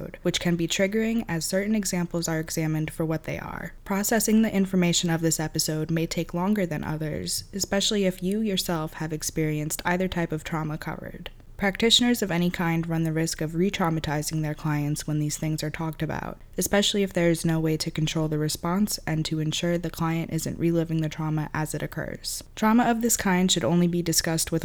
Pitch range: 155-180 Hz